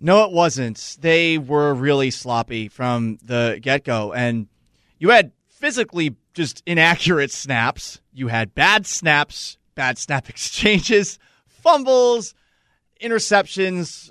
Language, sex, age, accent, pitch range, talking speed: English, male, 30-49, American, 130-175 Hz, 110 wpm